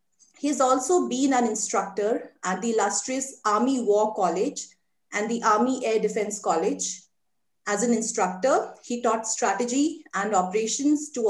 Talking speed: 145 wpm